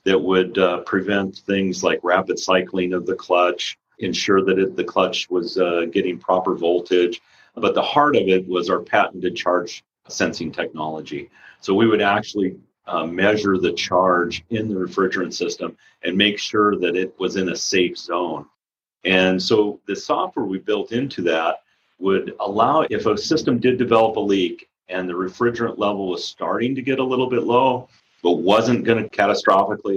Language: English